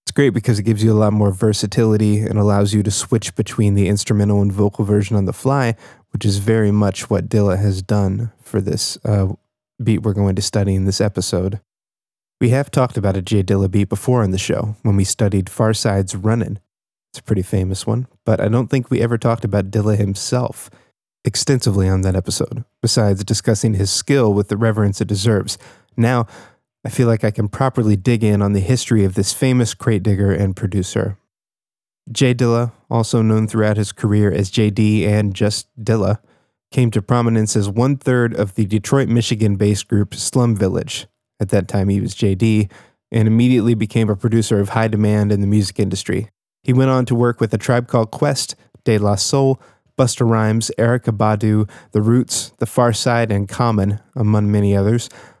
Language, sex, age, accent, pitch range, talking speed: English, male, 20-39, American, 100-120 Hz, 190 wpm